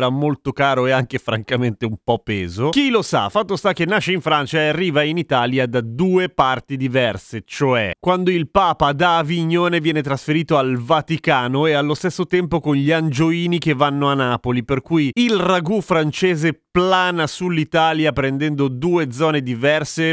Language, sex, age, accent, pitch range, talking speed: Italian, male, 30-49, native, 130-170 Hz, 170 wpm